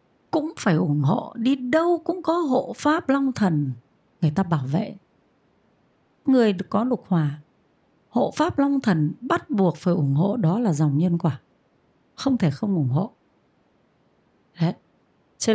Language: Vietnamese